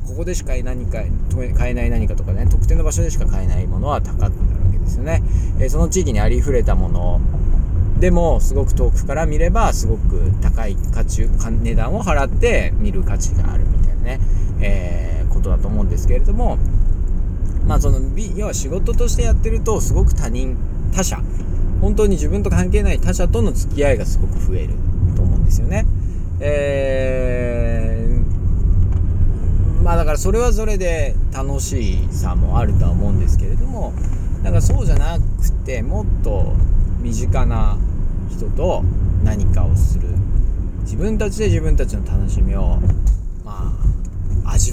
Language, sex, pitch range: Japanese, male, 90-95 Hz